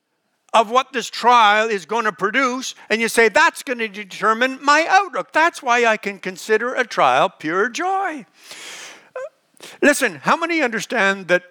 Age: 60-79